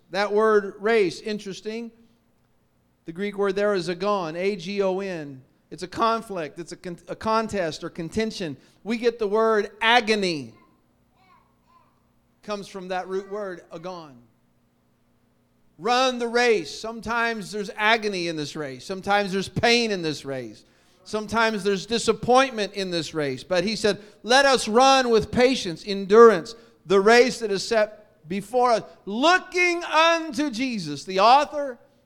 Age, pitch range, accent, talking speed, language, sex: 50-69, 165-220 Hz, American, 140 wpm, English, male